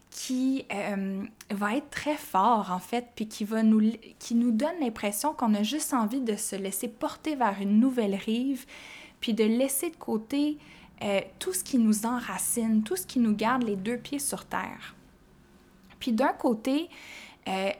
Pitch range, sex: 210-270 Hz, female